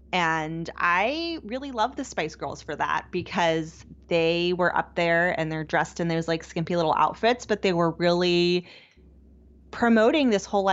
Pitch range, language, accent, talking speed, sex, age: 160-185 Hz, English, American, 170 wpm, female, 20-39